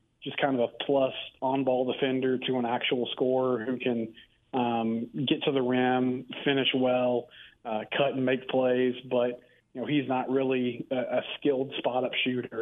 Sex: male